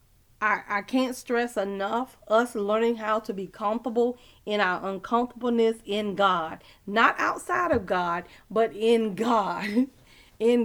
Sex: female